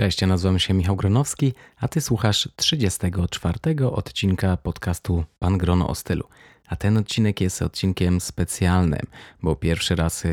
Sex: male